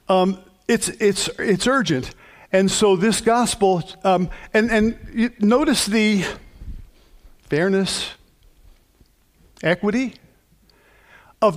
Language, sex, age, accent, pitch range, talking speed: English, male, 50-69, American, 155-205 Hz, 90 wpm